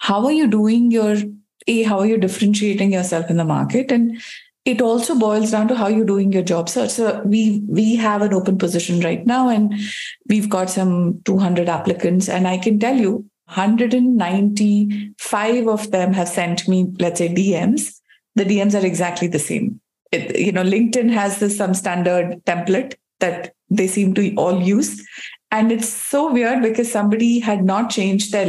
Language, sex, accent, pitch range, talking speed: English, female, Indian, 195-235 Hz, 180 wpm